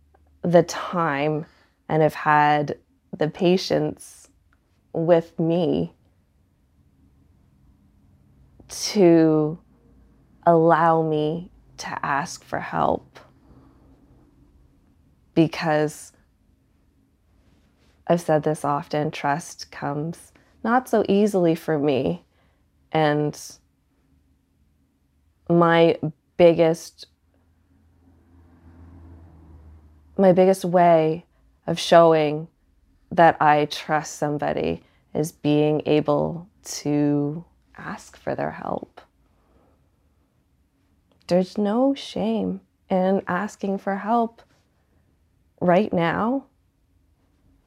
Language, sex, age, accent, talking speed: English, female, 20-39, American, 70 wpm